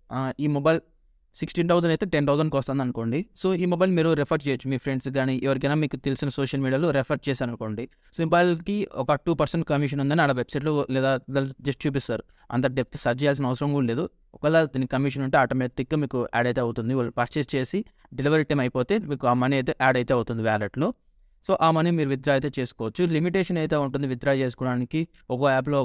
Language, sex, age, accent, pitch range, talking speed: Telugu, male, 20-39, native, 130-160 Hz, 190 wpm